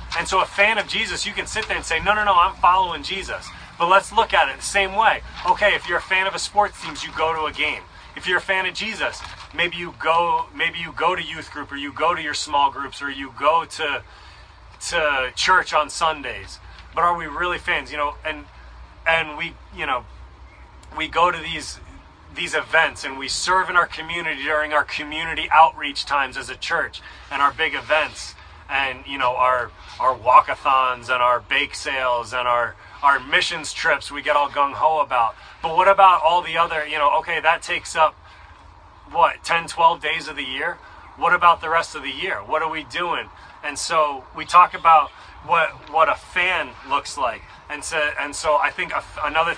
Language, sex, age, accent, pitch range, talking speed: English, male, 30-49, American, 135-170 Hz, 210 wpm